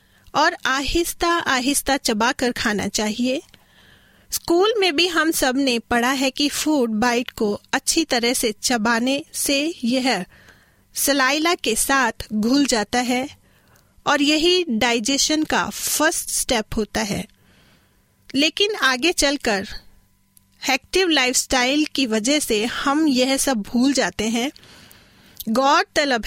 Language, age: Hindi, 30-49